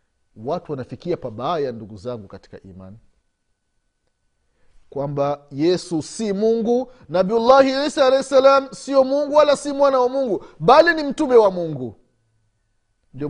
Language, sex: Swahili, male